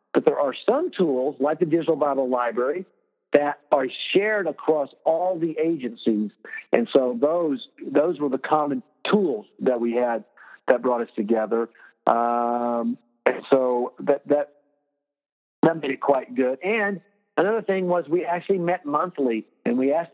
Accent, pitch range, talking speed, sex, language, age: American, 130-170 Hz, 160 wpm, male, English, 50-69